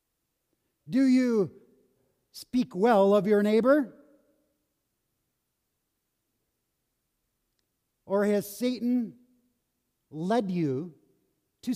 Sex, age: male, 50-69